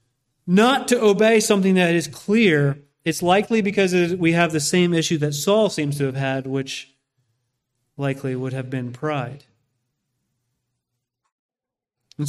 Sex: male